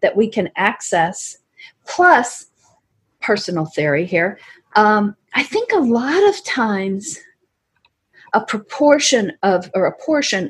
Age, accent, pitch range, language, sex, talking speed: 50-69, American, 185-240 Hz, English, female, 120 wpm